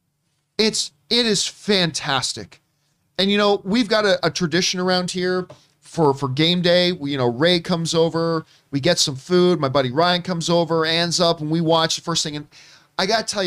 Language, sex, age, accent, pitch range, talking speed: English, male, 40-59, American, 145-195 Hz, 210 wpm